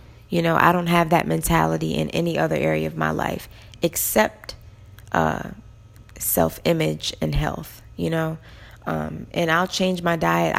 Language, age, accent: English, 20-39, American